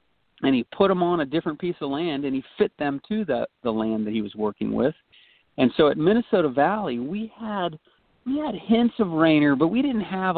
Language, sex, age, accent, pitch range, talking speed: English, male, 40-59, American, 125-155 Hz, 225 wpm